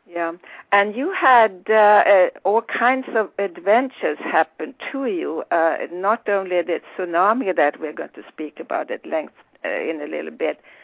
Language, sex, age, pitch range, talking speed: English, female, 60-79, 180-250 Hz, 170 wpm